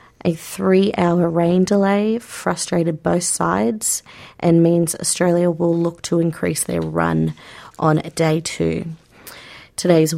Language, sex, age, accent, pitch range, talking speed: English, female, 30-49, Australian, 165-215 Hz, 120 wpm